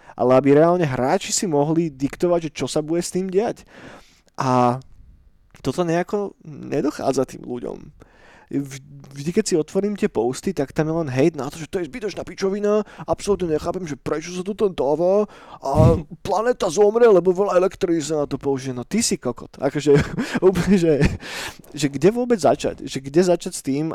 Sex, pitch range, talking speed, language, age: male, 135-180 Hz, 180 wpm, Slovak, 20-39